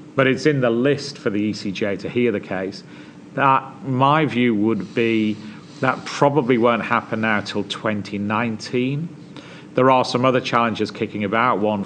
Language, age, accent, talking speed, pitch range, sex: English, 40-59, British, 160 wpm, 100-125 Hz, male